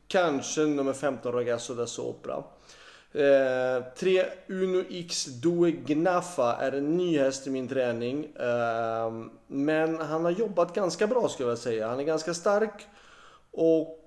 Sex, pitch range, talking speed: male, 130-175 Hz, 135 wpm